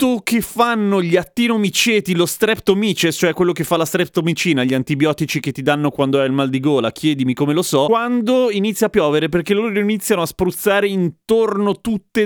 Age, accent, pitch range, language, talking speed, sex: 30-49, native, 145-205 Hz, Italian, 185 wpm, male